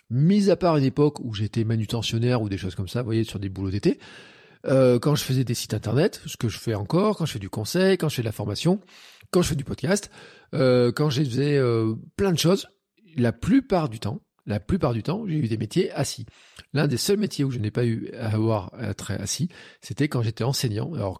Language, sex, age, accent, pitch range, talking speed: French, male, 40-59, French, 110-145 Hz, 245 wpm